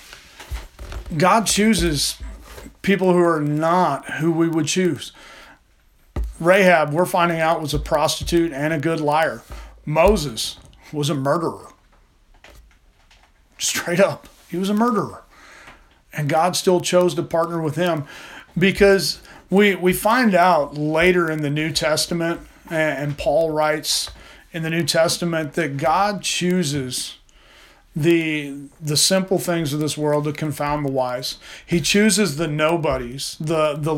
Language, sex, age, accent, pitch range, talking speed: English, male, 40-59, American, 145-170 Hz, 135 wpm